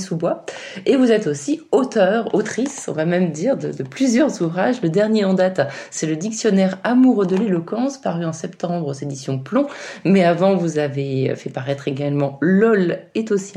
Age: 30-49